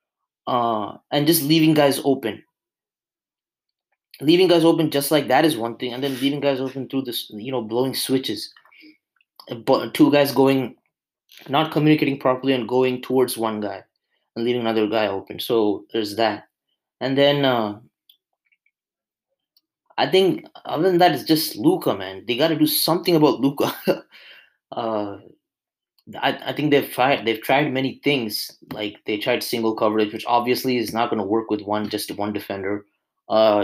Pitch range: 110-145 Hz